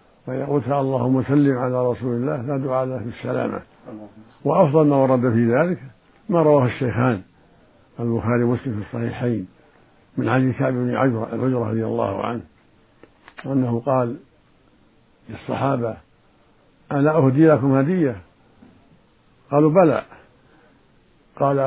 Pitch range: 120-135 Hz